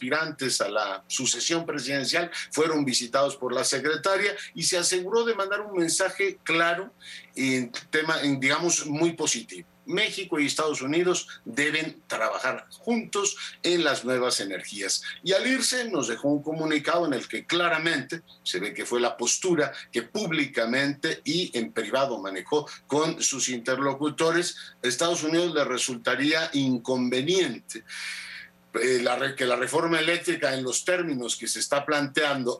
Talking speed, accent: 145 wpm, Mexican